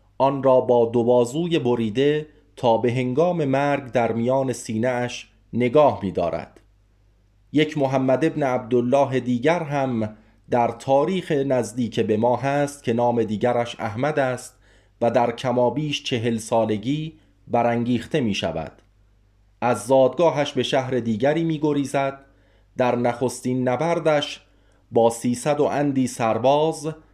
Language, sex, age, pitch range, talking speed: Persian, male, 30-49, 115-140 Hz, 115 wpm